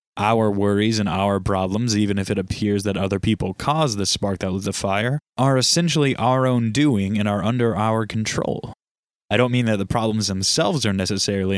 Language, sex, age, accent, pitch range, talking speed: English, male, 20-39, American, 100-130 Hz, 195 wpm